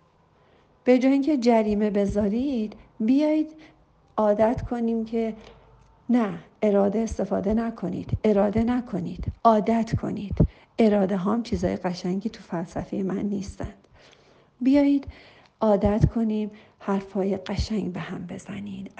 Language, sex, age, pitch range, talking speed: Persian, female, 50-69, 190-230 Hz, 105 wpm